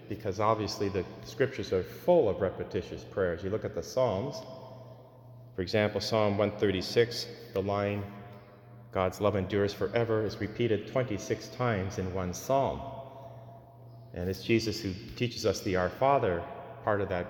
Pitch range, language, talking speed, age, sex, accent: 95-120 Hz, English, 150 wpm, 30-49, male, American